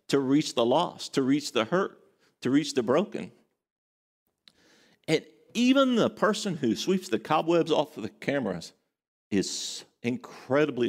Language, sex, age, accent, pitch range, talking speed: English, male, 50-69, American, 100-140 Hz, 145 wpm